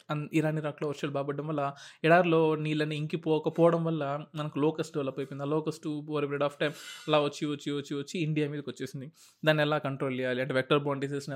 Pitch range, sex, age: 135-150 Hz, male, 20-39